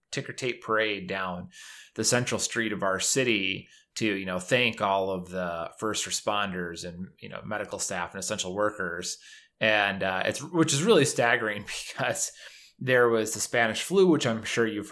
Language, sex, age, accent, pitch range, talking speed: English, male, 30-49, American, 95-115 Hz, 175 wpm